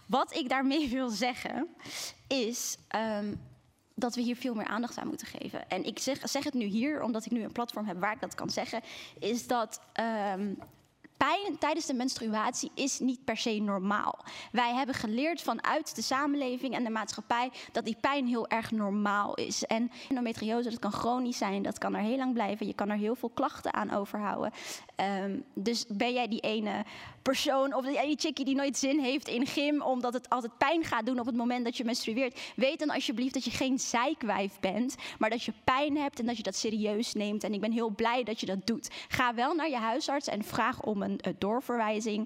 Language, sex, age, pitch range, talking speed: Dutch, female, 20-39, 215-270 Hz, 210 wpm